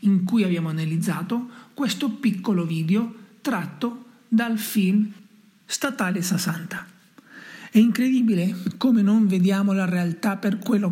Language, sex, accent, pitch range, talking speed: Italian, male, native, 180-225 Hz, 115 wpm